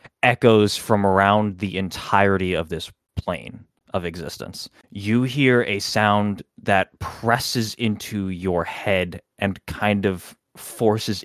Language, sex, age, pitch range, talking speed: English, male, 20-39, 95-115 Hz, 125 wpm